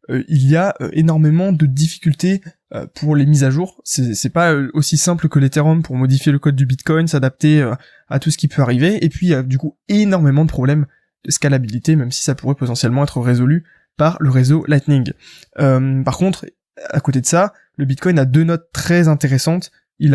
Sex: male